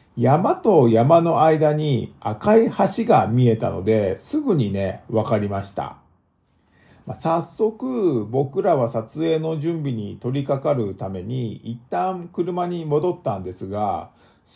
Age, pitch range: 50-69, 110-185 Hz